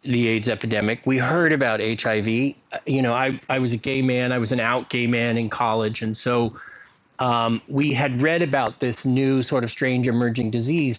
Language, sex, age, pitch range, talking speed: English, male, 40-59, 115-150 Hz, 200 wpm